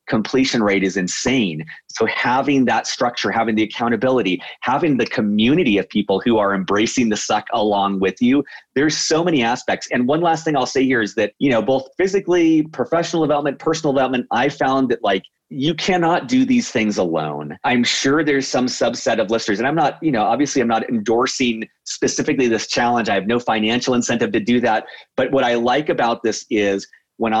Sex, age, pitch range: male, 30-49, 110-140 Hz